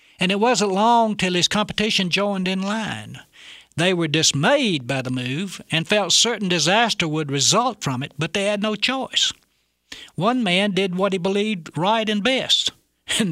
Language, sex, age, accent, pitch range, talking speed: English, male, 60-79, American, 145-200 Hz, 175 wpm